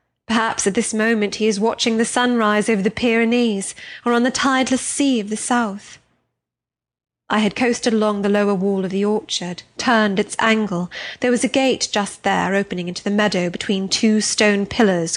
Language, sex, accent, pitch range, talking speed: English, female, British, 195-235 Hz, 185 wpm